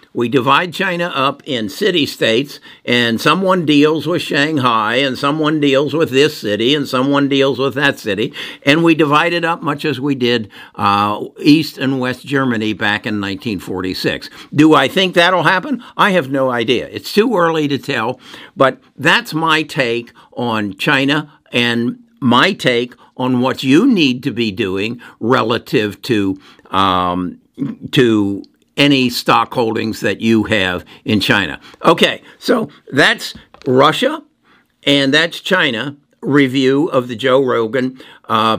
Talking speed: 150 wpm